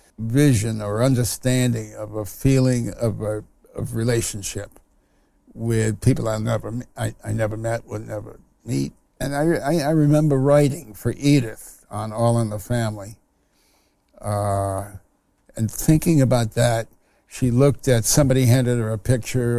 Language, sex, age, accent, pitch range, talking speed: English, male, 60-79, American, 110-140 Hz, 145 wpm